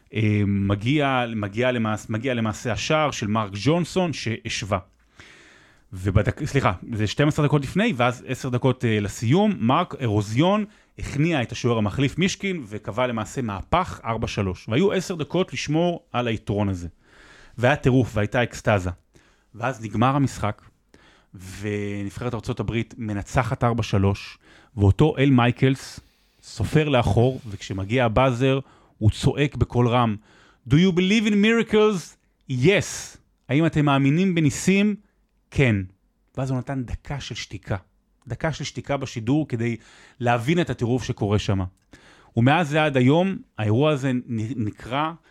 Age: 30-49